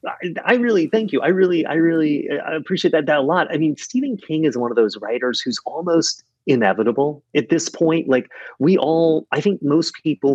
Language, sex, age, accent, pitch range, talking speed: English, male, 30-49, American, 110-155 Hz, 215 wpm